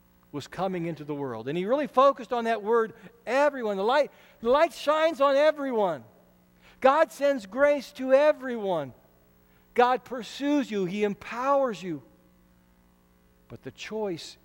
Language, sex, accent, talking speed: English, male, American, 135 wpm